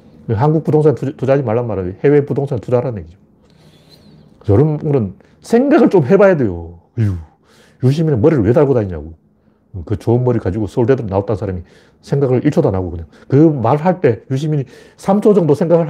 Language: Korean